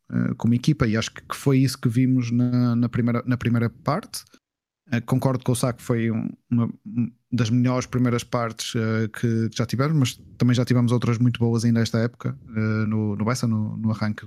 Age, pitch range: 20-39, 110-125 Hz